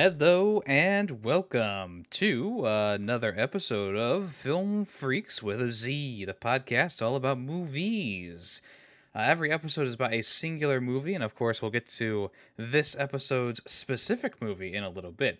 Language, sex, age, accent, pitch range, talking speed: English, male, 20-39, American, 105-145 Hz, 155 wpm